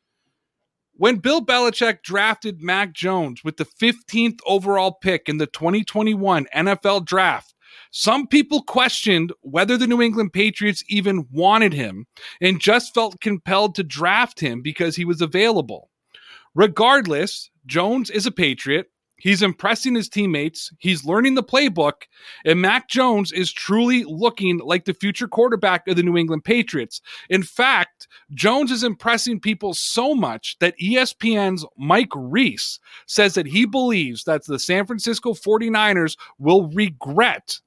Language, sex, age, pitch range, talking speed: English, male, 30-49, 170-220 Hz, 140 wpm